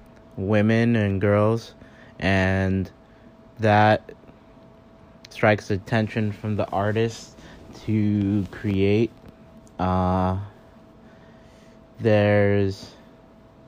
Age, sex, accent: 20-39, male, American